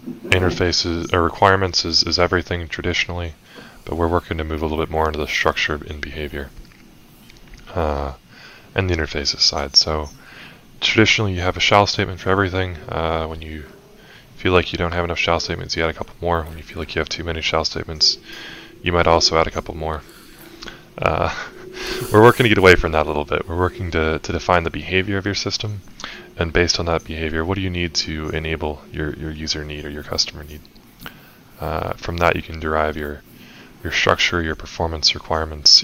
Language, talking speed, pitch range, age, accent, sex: English, 200 wpm, 80-90 Hz, 20-39, American, male